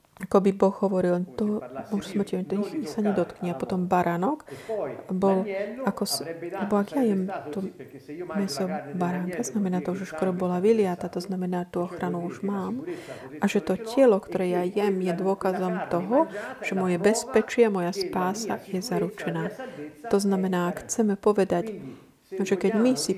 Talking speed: 160 wpm